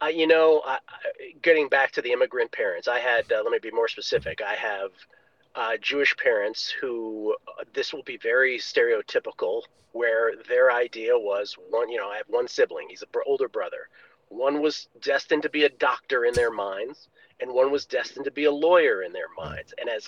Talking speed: 205 wpm